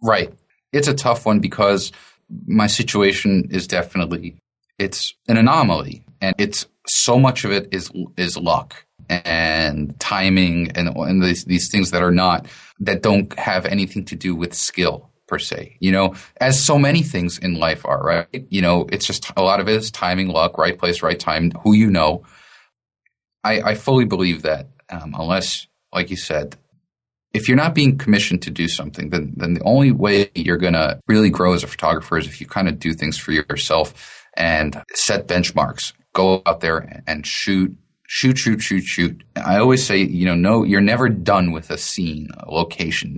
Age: 30-49